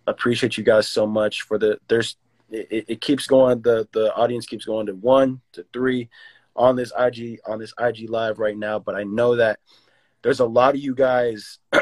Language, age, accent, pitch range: English, 20-39, American, 105-120 Hz